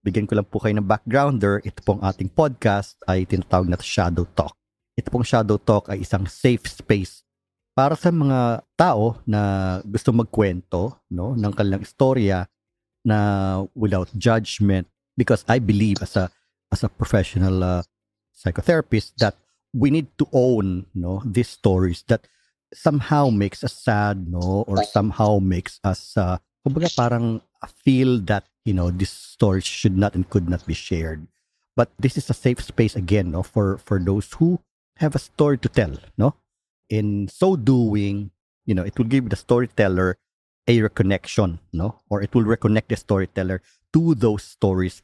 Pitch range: 95-115 Hz